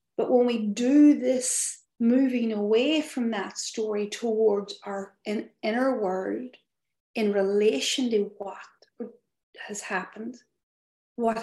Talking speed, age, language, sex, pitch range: 110 wpm, 40-59, English, female, 215-245 Hz